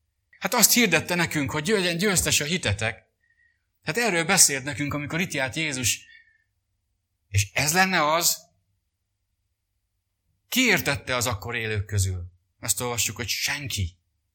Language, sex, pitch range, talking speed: English, male, 95-145 Hz, 125 wpm